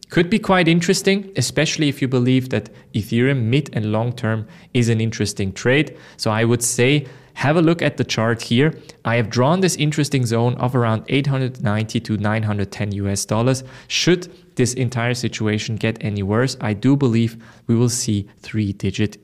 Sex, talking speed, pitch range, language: male, 180 wpm, 105-135 Hz, English